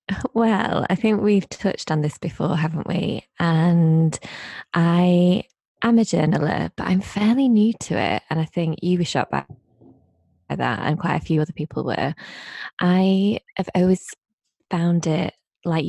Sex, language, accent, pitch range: female, English, British, 155-175 Hz